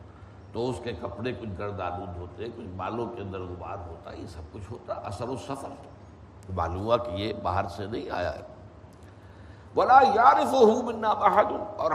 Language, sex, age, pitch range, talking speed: Urdu, male, 60-79, 95-120 Hz, 175 wpm